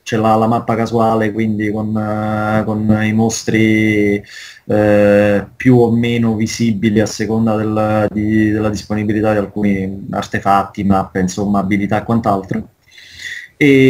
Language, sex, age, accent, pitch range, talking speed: Italian, male, 20-39, native, 110-130 Hz, 120 wpm